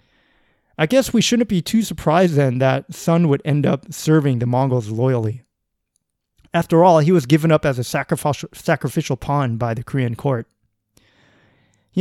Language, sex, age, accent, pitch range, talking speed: English, male, 30-49, American, 125-160 Hz, 165 wpm